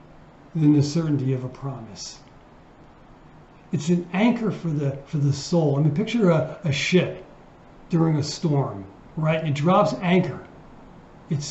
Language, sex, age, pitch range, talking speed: English, male, 60-79, 140-205 Hz, 140 wpm